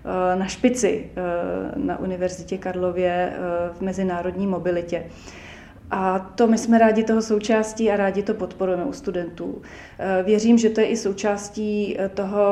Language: Czech